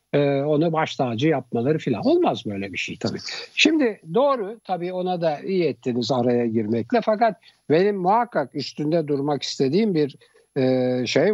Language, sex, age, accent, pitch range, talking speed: Turkish, male, 60-79, native, 140-205 Hz, 140 wpm